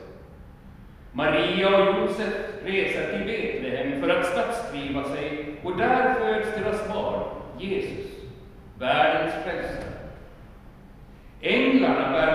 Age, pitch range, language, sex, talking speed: 60-79, 160-235 Hz, Swedish, male, 95 wpm